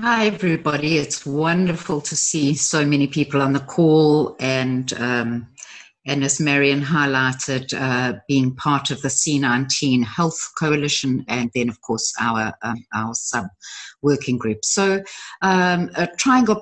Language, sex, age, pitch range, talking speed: English, female, 50-69, 140-175 Hz, 150 wpm